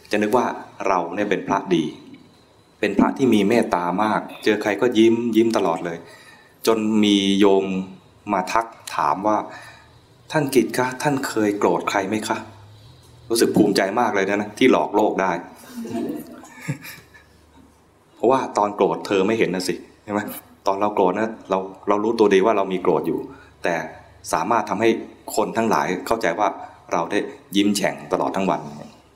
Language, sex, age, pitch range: English, male, 20-39, 95-120 Hz